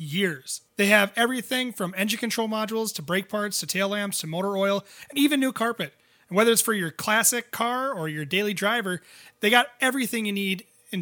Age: 30-49